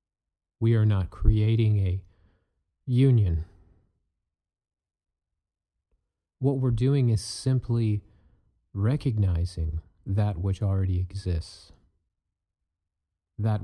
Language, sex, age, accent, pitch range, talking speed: English, male, 40-59, American, 90-110 Hz, 75 wpm